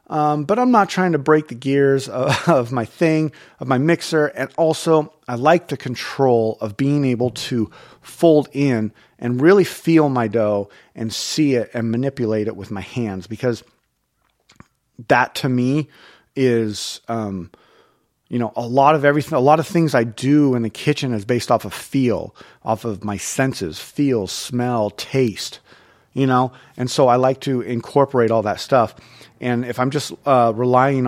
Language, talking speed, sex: English, 180 wpm, male